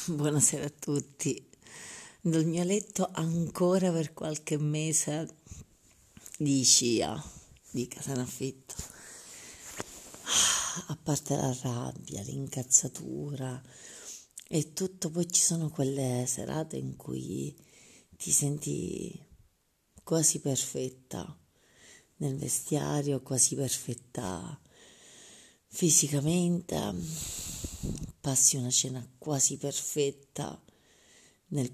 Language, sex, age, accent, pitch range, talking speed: Italian, female, 40-59, native, 130-160 Hz, 85 wpm